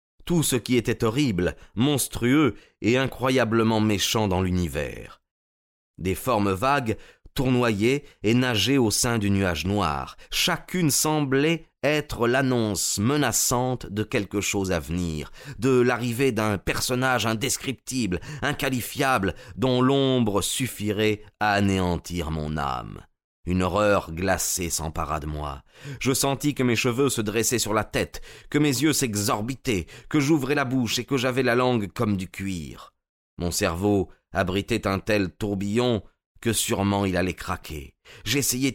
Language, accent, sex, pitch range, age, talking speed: French, French, male, 95-130 Hz, 30-49, 140 wpm